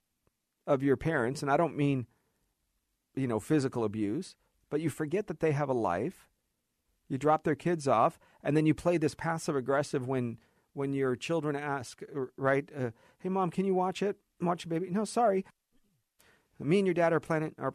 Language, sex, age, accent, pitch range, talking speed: English, male, 40-59, American, 130-165 Hz, 190 wpm